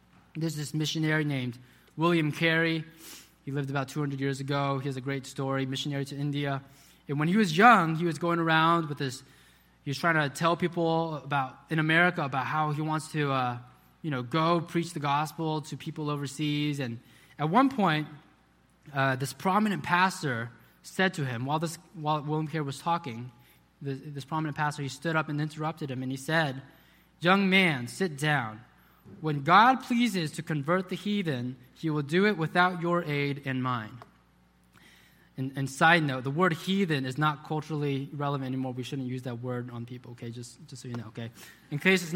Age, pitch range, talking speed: 20-39, 135-185 Hz, 190 wpm